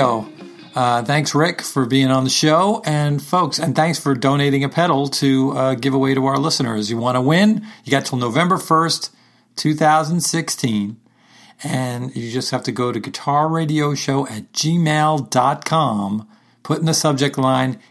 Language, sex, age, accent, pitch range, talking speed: English, male, 40-59, American, 115-150 Hz, 165 wpm